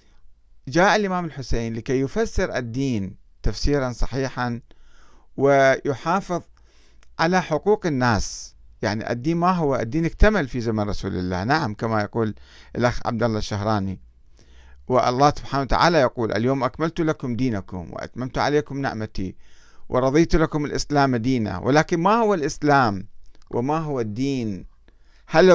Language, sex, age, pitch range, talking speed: Arabic, male, 50-69, 110-150 Hz, 120 wpm